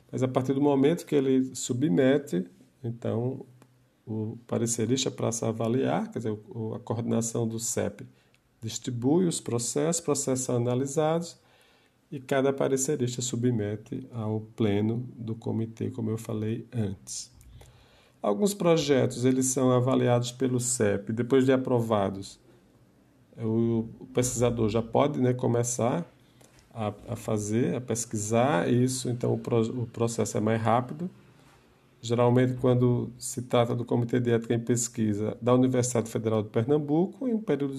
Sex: male